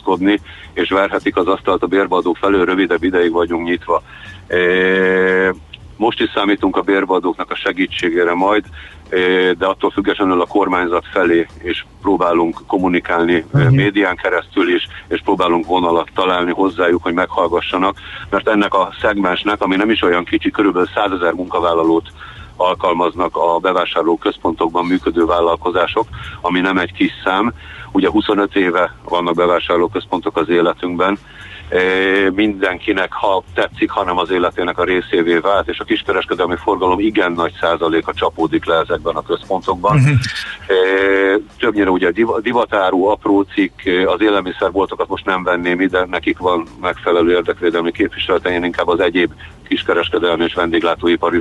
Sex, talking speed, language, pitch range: male, 135 wpm, Hungarian, 85-95 Hz